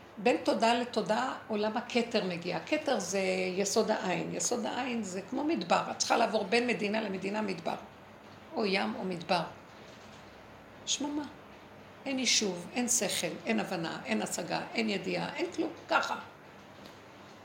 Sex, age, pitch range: female, 50-69, 195-245 Hz